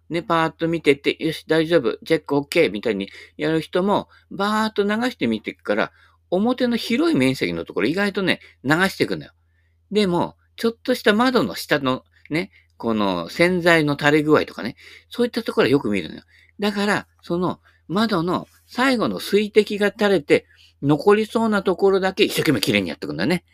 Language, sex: Japanese, male